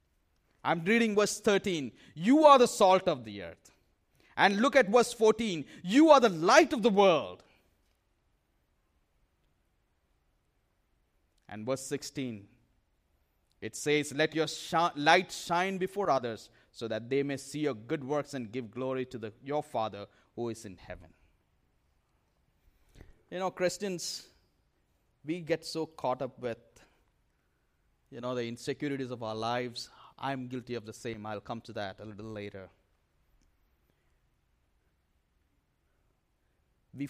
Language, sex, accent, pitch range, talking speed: English, male, Indian, 100-145 Hz, 130 wpm